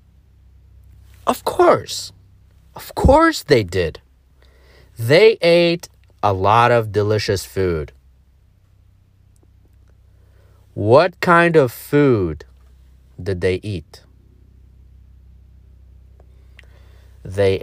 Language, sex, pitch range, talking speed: English, male, 75-115 Hz, 70 wpm